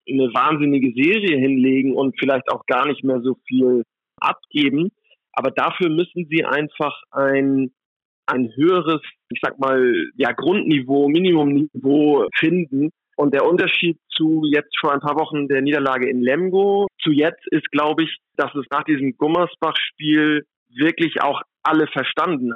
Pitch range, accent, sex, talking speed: 135-165 Hz, German, male, 145 wpm